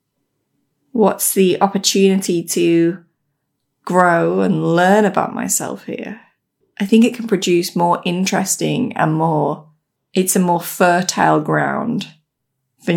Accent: British